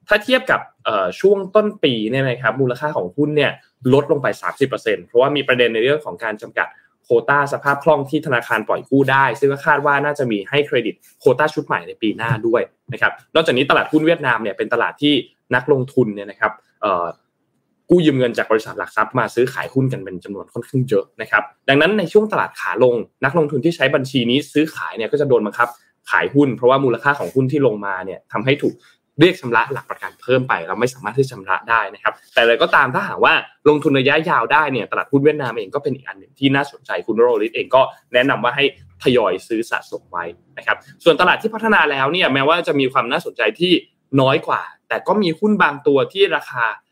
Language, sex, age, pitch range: Thai, male, 20-39, 130-195 Hz